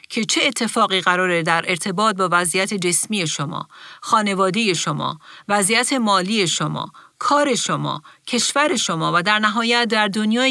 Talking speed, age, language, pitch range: 135 wpm, 50-69, Persian, 170-210 Hz